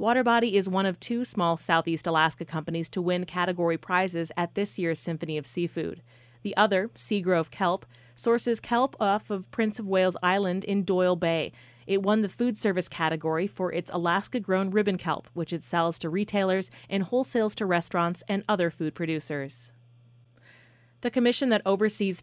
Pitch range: 165-210 Hz